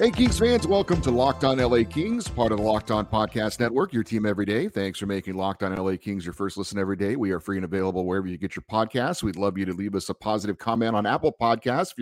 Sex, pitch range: male, 100-135 Hz